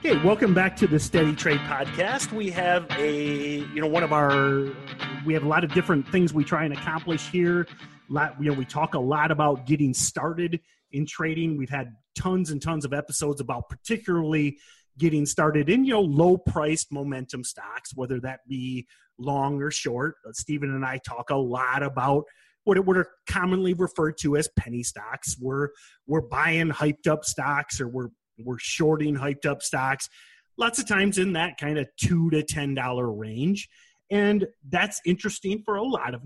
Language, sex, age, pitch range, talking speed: English, male, 30-49, 135-170 Hz, 185 wpm